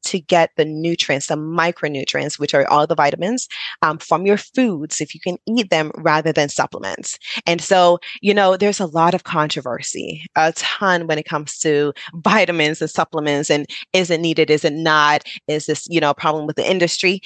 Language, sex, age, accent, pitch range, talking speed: English, female, 20-39, American, 155-190 Hz, 200 wpm